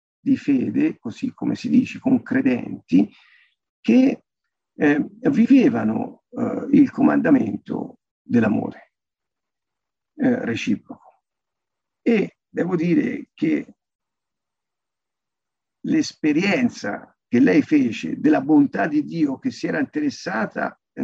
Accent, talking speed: native, 95 wpm